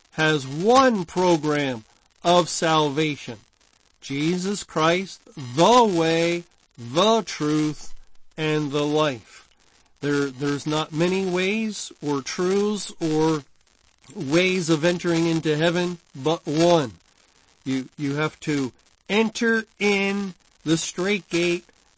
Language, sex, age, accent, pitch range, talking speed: English, male, 50-69, American, 150-185 Hz, 105 wpm